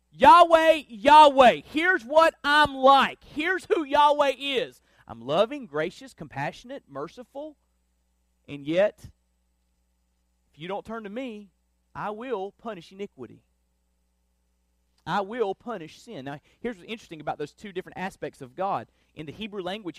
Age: 30-49